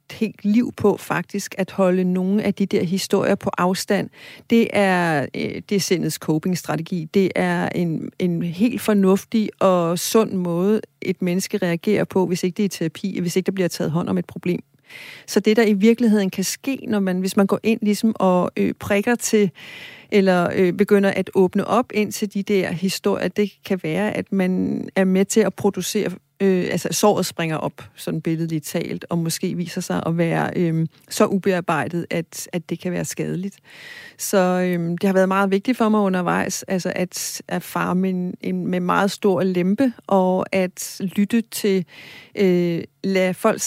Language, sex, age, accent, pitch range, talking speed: Danish, female, 40-59, native, 180-210 Hz, 185 wpm